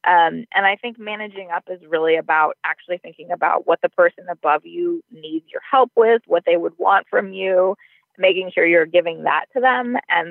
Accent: American